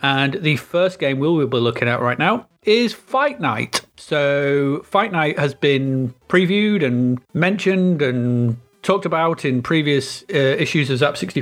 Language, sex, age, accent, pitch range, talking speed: English, male, 30-49, British, 130-175 Hz, 160 wpm